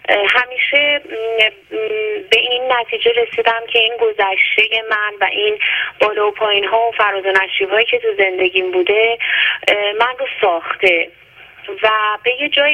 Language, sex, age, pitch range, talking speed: Persian, female, 30-49, 200-285 Hz, 130 wpm